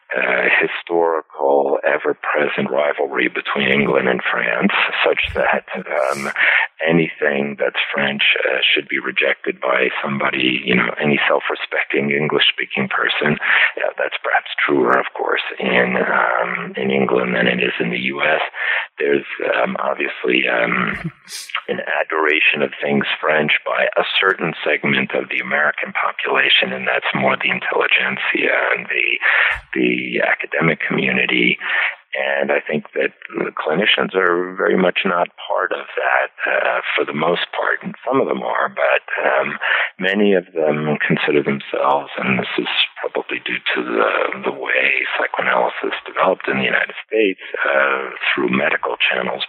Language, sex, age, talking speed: English, male, 50-69, 145 wpm